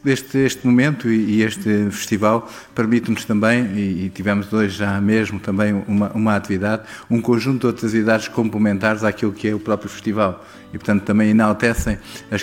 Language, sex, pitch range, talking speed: Portuguese, male, 105-115 Hz, 170 wpm